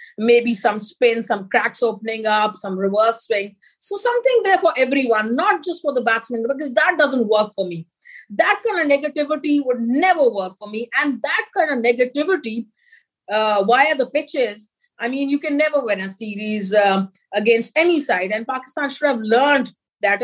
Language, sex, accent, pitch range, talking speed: English, female, Indian, 215-280 Hz, 185 wpm